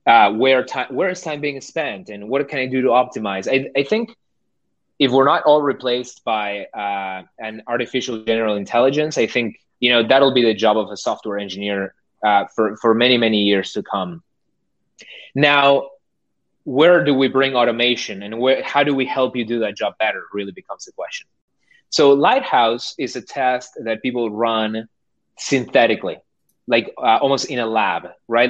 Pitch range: 110-135 Hz